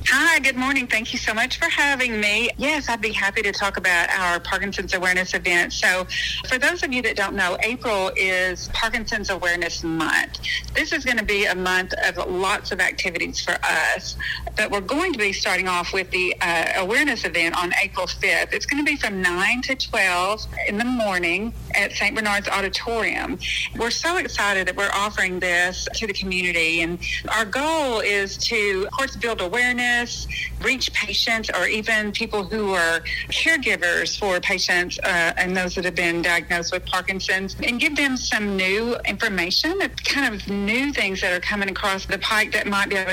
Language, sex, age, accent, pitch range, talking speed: English, female, 40-59, American, 180-225 Hz, 190 wpm